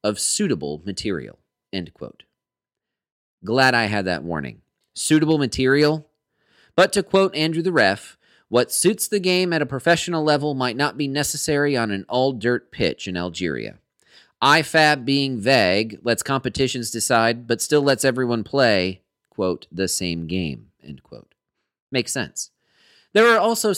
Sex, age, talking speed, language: male, 30-49, 145 wpm, English